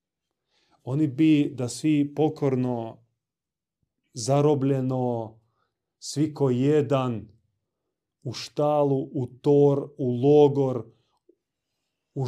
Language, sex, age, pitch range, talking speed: Croatian, male, 30-49, 115-145 Hz, 75 wpm